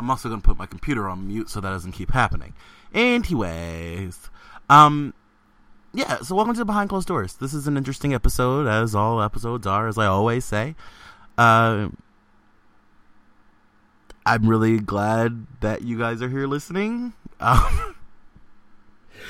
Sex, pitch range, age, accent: male, 95-120 Hz, 20-39, American